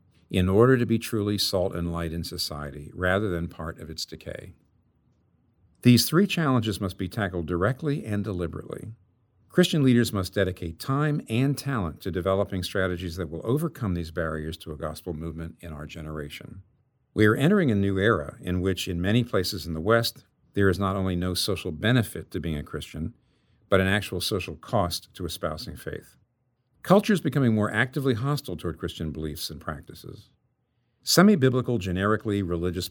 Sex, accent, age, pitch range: male, American, 50-69, 85-120 Hz